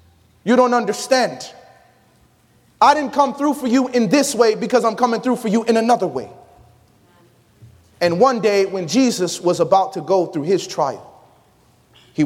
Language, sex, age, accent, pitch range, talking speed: English, male, 30-49, American, 115-180 Hz, 165 wpm